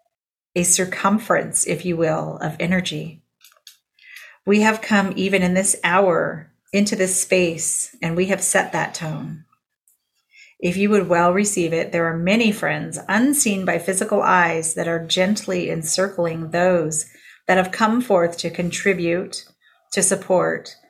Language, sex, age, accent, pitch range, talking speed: English, female, 40-59, American, 170-205 Hz, 145 wpm